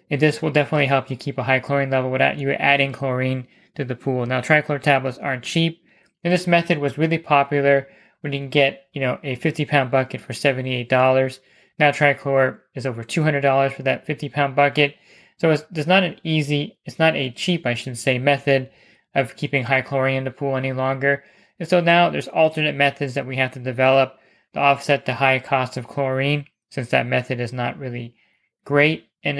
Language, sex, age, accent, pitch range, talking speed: English, male, 20-39, American, 130-145 Hz, 200 wpm